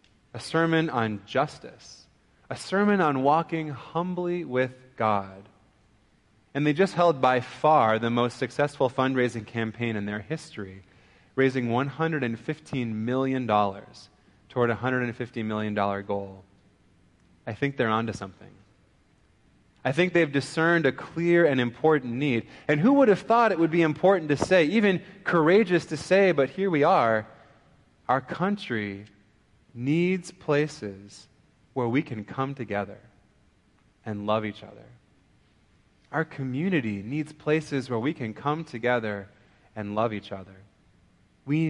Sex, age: male, 30-49